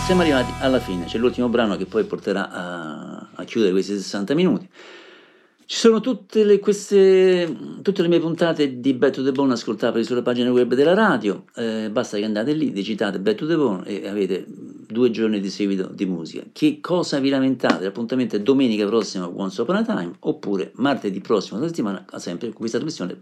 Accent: native